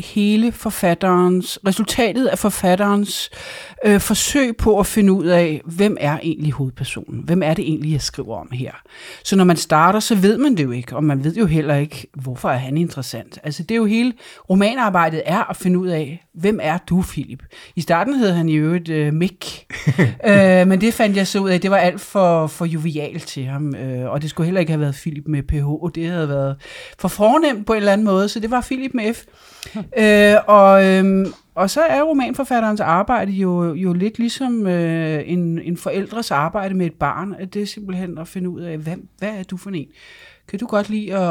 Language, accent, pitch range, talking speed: Danish, native, 155-210 Hz, 210 wpm